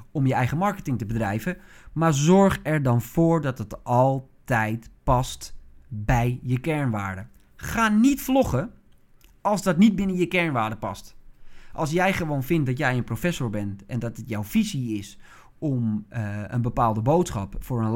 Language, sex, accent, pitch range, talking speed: Dutch, male, Dutch, 120-170 Hz, 165 wpm